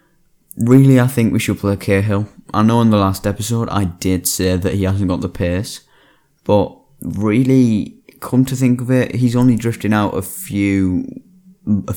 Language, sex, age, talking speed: English, male, 10-29, 180 wpm